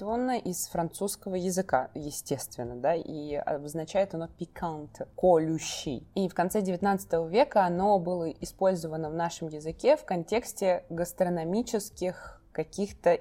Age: 20-39